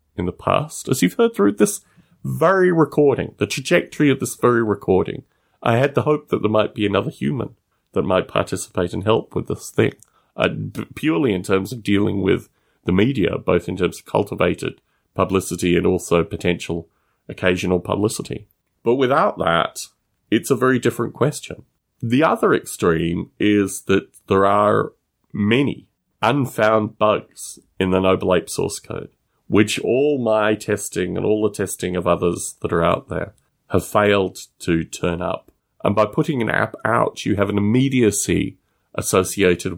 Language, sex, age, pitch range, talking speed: English, male, 30-49, 90-130 Hz, 165 wpm